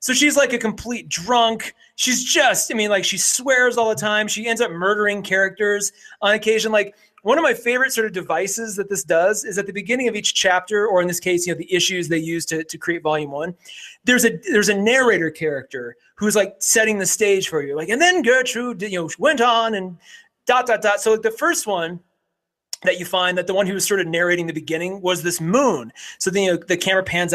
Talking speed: 235 wpm